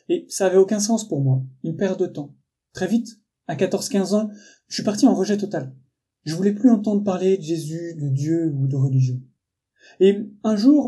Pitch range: 160-220 Hz